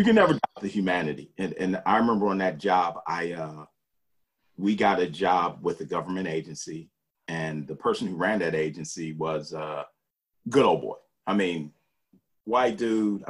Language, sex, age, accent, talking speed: English, male, 40-59, American, 180 wpm